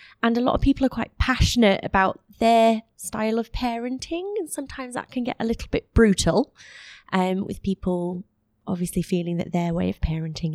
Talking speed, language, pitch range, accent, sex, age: 180 wpm, English, 175-205 Hz, British, female, 20-39